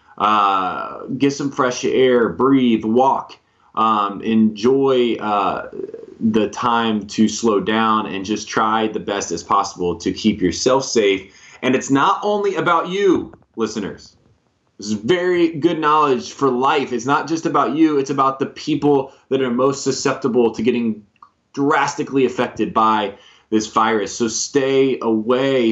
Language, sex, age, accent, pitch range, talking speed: English, male, 20-39, American, 100-135 Hz, 145 wpm